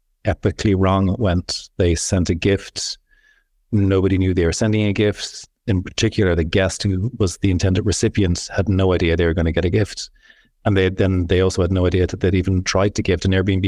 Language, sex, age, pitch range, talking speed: English, male, 30-49, 90-105 Hz, 225 wpm